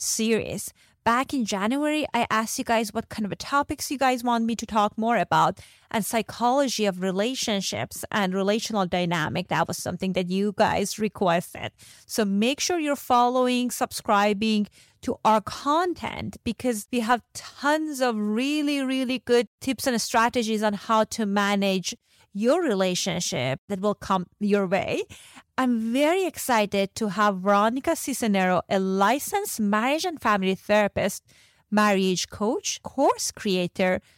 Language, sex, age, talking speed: English, female, 30-49, 145 wpm